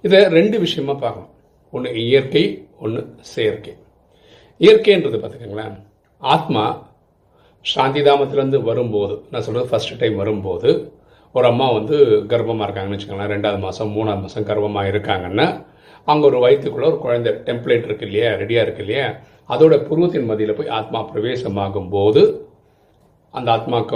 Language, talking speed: Tamil, 125 wpm